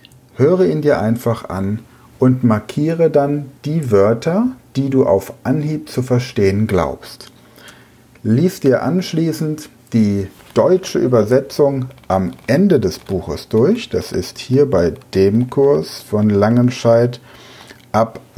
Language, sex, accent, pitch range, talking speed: German, male, German, 105-135 Hz, 120 wpm